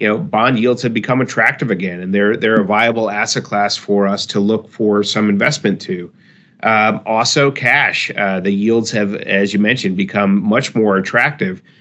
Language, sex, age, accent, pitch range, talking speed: English, male, 40-59, American, 105-130 Hz, 190 wpm